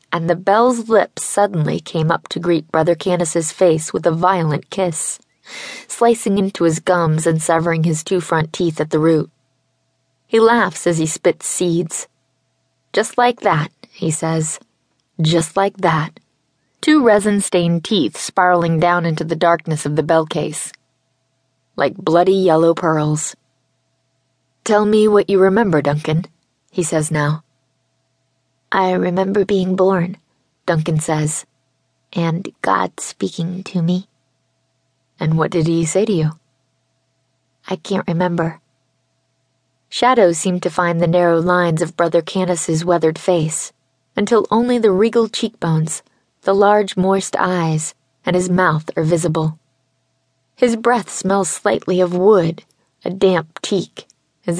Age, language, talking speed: 20-39, English, 135 wpm